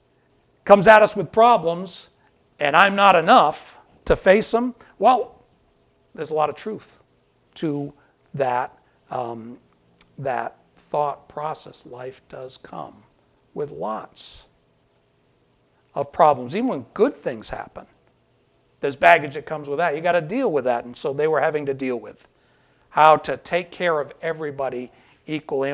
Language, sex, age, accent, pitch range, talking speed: English, male, 60-79, American, 145-195 Hz, 145 wpm